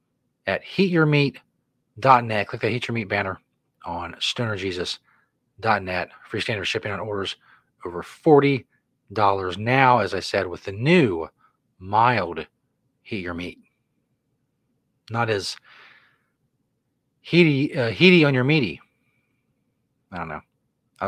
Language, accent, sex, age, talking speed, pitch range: English, American, male, 30-49, 100 wpm, 115-155 Hz